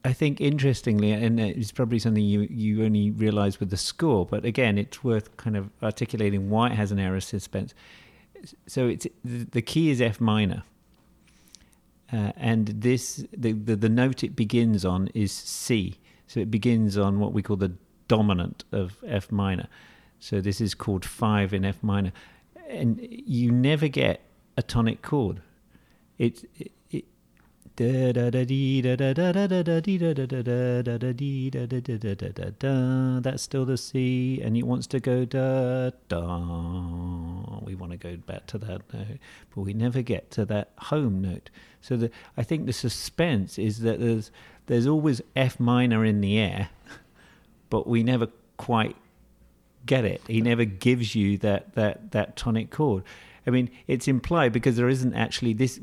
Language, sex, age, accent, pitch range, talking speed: English, male, 40-59, British, 100-125 Hz, 165 wpm